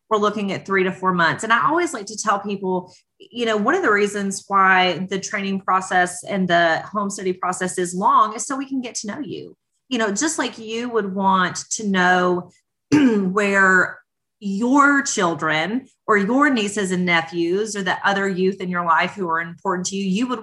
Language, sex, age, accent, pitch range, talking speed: English, female, 30-49, American, 175-215 Hz, 205 wpm